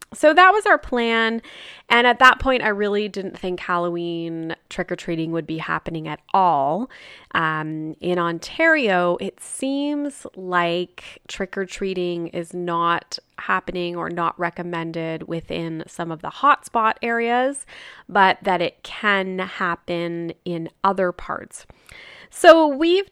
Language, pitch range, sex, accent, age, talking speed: English, 170-225 Hz, female, American, 20-39, 125 wpm